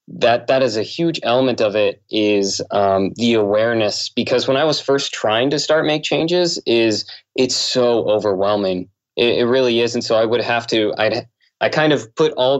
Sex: male